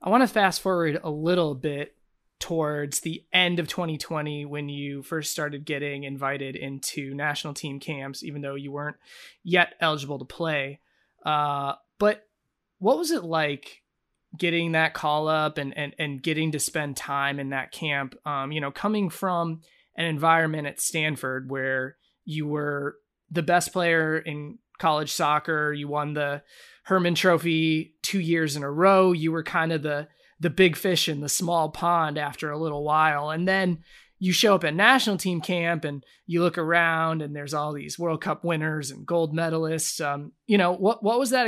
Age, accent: 20-39, American